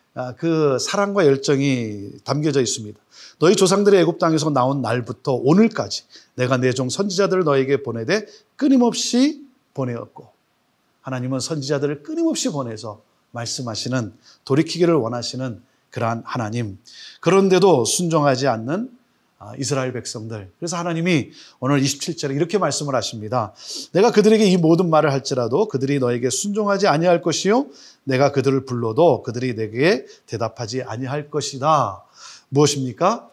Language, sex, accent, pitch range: Korean, male, native, 130-185 Hz